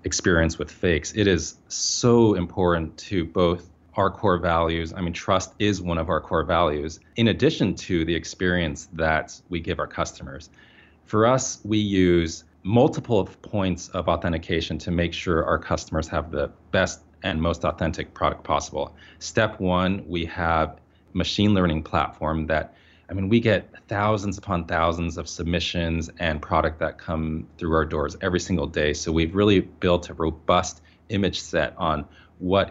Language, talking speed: English, 165 wpm